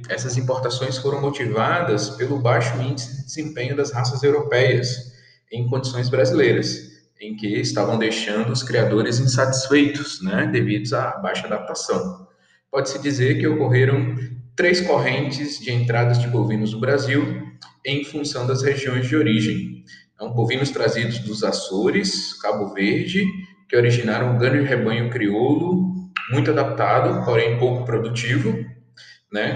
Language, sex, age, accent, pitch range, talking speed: Portuguese, male, 20-39, Brazilian, 115-145 Hz, 130 wpm